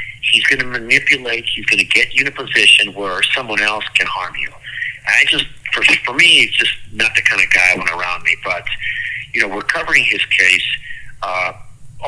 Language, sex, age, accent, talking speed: English, male, 50-69, American, 215 wpm